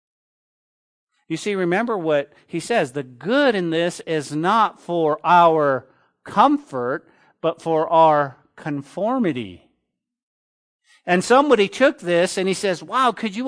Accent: American